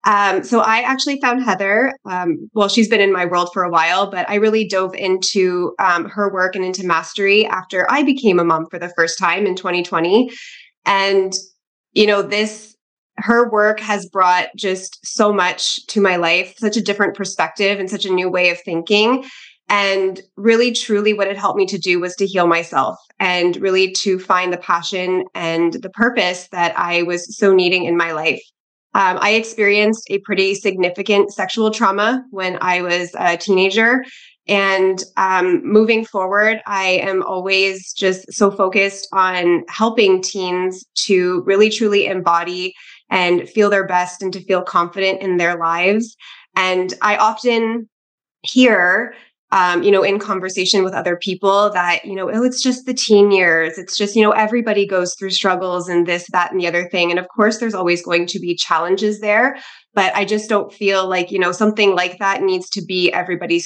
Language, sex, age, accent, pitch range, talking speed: English, female, 20-39, American, 180-210 Hz, 185 wpm